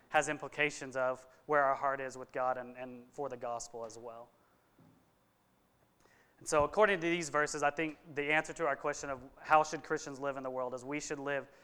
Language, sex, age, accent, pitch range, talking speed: English, male, 30-49, American, 135-160 Hz, 210 wpm